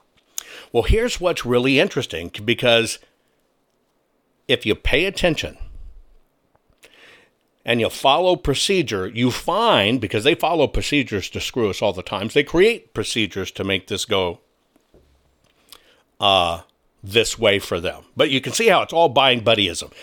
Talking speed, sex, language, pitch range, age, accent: 140 wpm, male, English, 115-155 Hz, 60-79, American